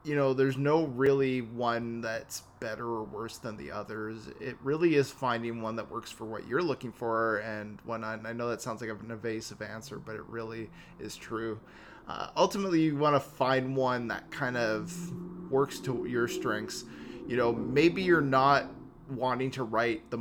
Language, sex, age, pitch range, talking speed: English, male, 20-39, 110-135 Hz, 185 wpm